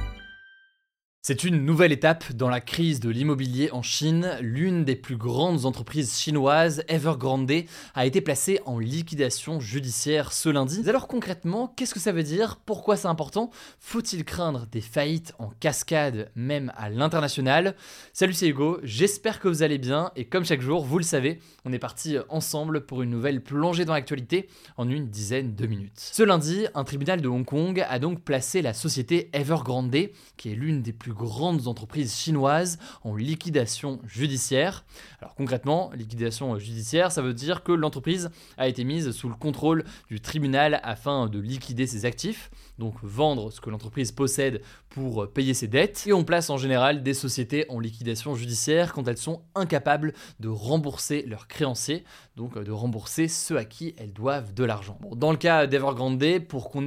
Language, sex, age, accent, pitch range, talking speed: French, male, 20-39, French, 125-165 Hz, 175 wpm